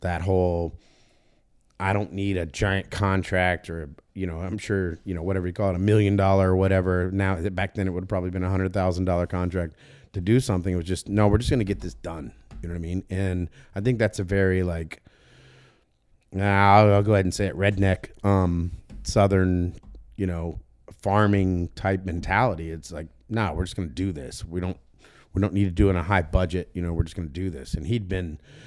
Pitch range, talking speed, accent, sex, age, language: 90-105 Hz, 230 wpm, American, male, 30-49, English